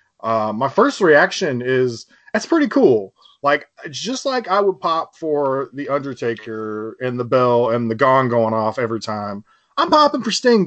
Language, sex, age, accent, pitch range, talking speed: English, male, 20-39, American, 130-185 Hz, 175 wpm